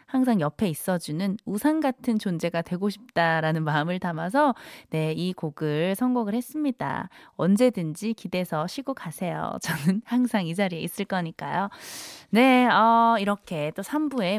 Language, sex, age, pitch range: Korean, female, 20-39, 180-290 Hz